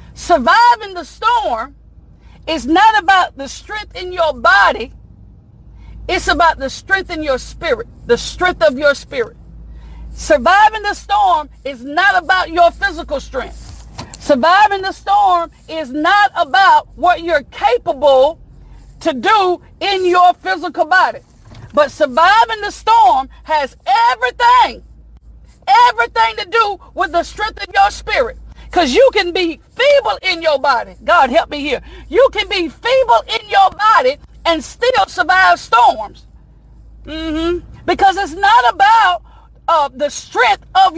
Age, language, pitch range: 50-69, English, 325-425 Hz